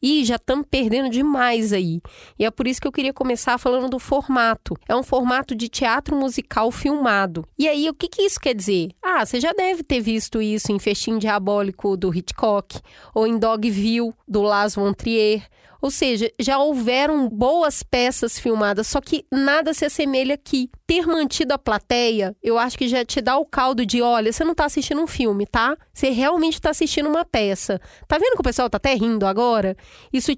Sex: female